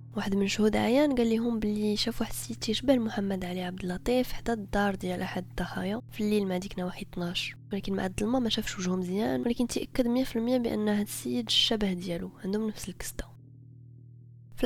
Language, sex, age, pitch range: Arabic, female, 20-39, 180-220 Hz